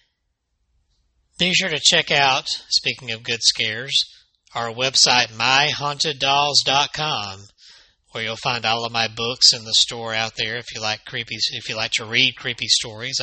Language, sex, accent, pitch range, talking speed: English, male, American, 110-130 Hz, 160 wpm